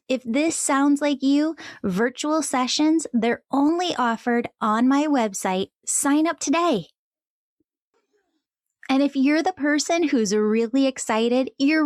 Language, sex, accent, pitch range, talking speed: English, female, American, 225-295 Hz, 125 wpm